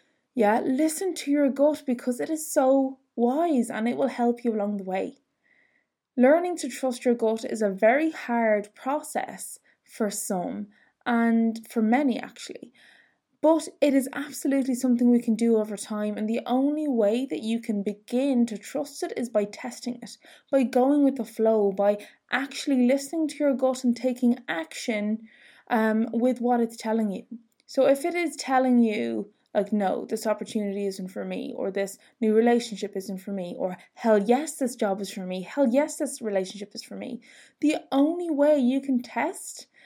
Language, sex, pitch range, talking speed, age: English, female, 220-275 Hz, 180 wpm, 20-39